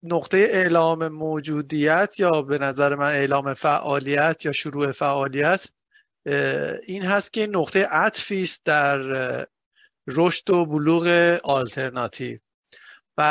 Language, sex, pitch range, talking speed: Persian, male, 145-185 Hz, 110 wpm